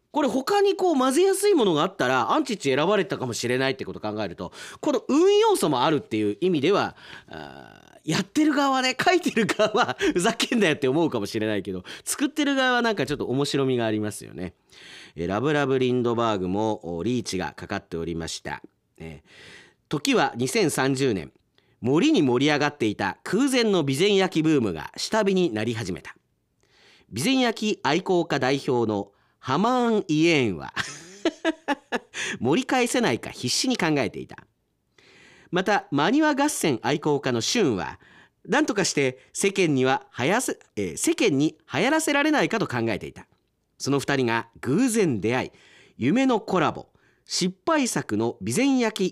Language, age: Japanese, 40-59